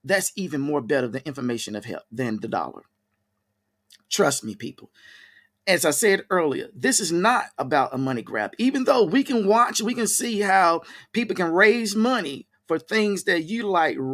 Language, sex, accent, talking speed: English, male, American, 185 wpm